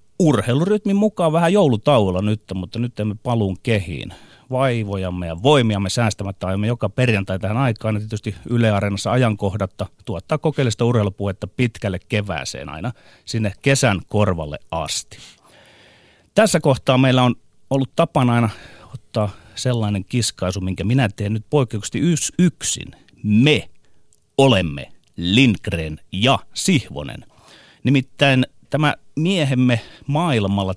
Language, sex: Finnish, male